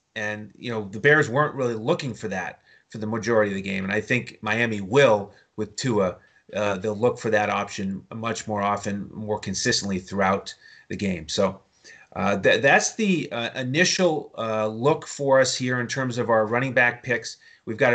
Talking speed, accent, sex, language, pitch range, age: 190 wpm, American, male, English, 110-135 Hz, 30-49